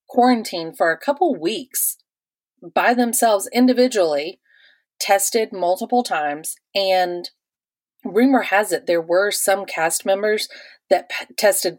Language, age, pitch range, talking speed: English, 30-49, 160-215 Hz, 110 wpm